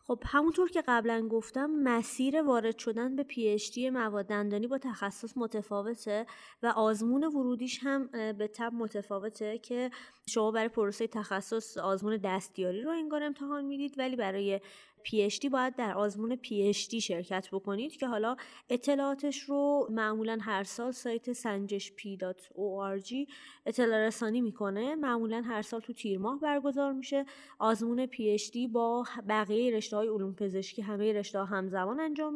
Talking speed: 145 wpm